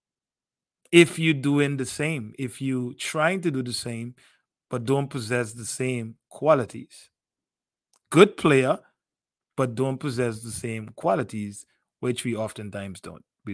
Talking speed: 135 wpm